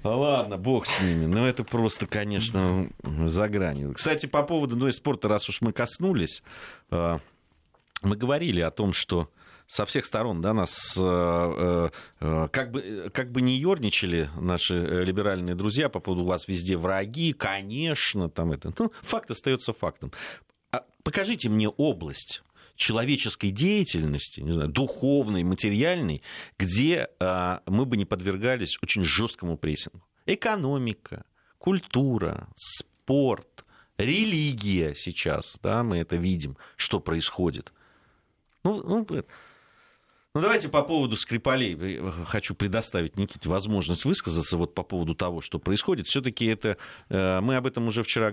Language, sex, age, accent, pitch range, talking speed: Russian, male, 40-59, native, 90-120 Hz, 135 wpm